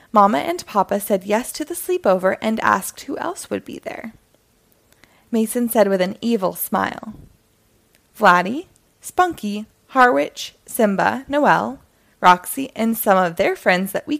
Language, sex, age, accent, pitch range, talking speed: English, female, 20-39, American, 190-275 Hz, 145 wpm